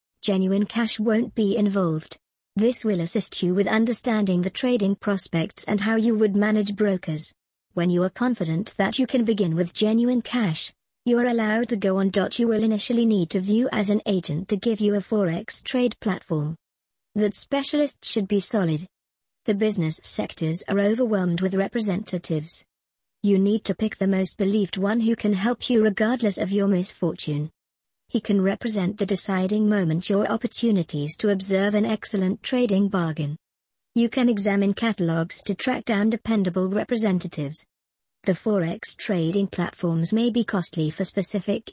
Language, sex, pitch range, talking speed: English, male, 185-220 Hz, 165 wpm